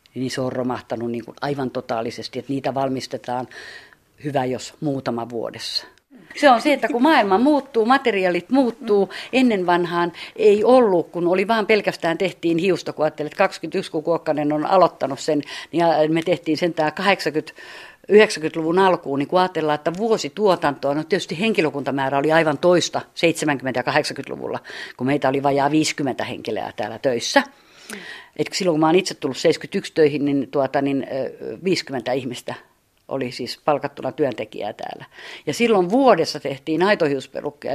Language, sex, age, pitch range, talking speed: Finnish, female, 50-69, 145-200 Hz, 150 wpm